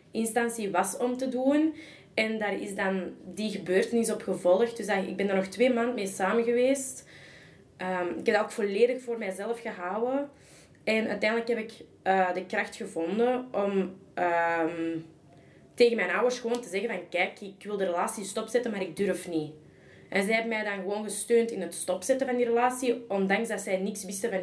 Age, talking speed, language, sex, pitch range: 20-39, 185 wpm, Dutch, female, 175-210 Hz